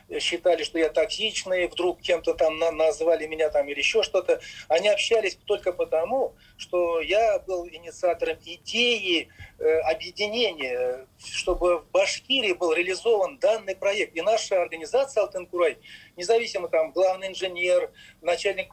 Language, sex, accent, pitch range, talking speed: Russian, male, native, 165-220 Hz, 130 wpm